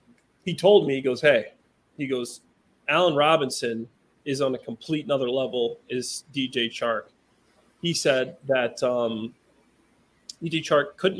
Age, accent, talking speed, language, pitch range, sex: 30-49, American, 140 wpm, English, 125-150 Hz, male